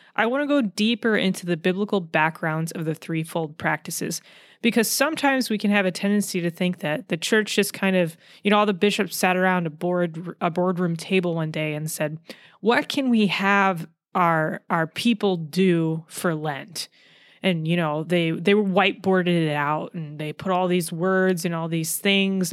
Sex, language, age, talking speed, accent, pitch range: female, English, 20-39, 190 wpm, American, 170-210 Hz